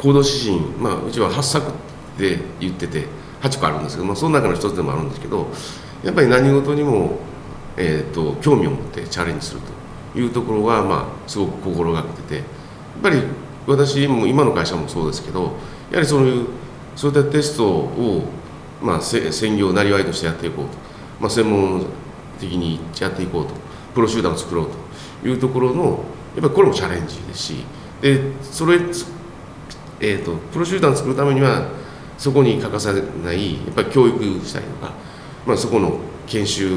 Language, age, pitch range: Japanese, 40-59, 95-140 Hz